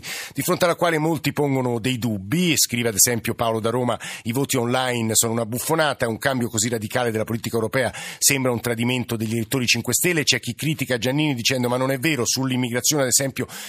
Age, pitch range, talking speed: 50-69, 115-140 Hz, 200 wpm